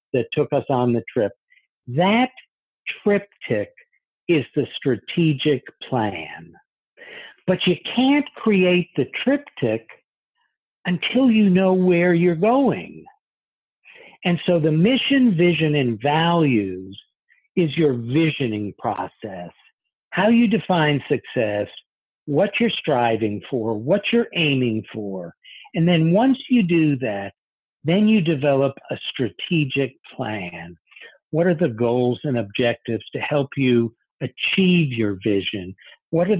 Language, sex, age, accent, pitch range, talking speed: English, male, 60-79, American, 125-190 Hz, 120 wpm